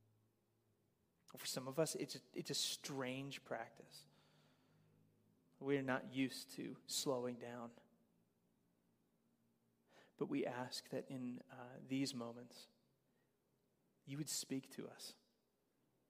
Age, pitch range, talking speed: 30-49, 125-140 Hz, 110 wpm